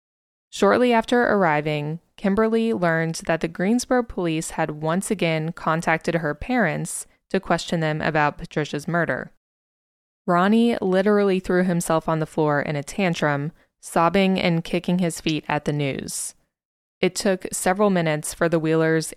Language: English